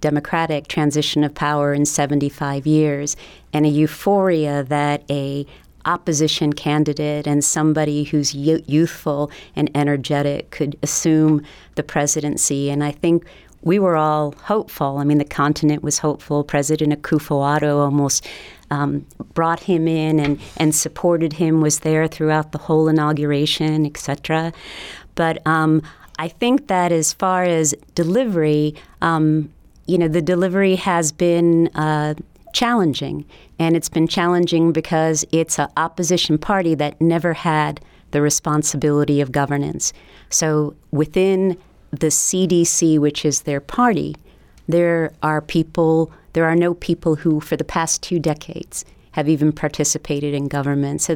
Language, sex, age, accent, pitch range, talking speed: English, female, 40-59, American, 150-165 Hz, 135 wpm